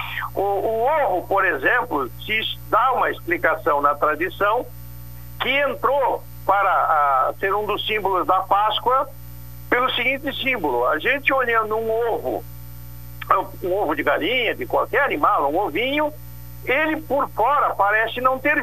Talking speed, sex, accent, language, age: 140 wpm, male, Brazilian, Portuguese, 60-79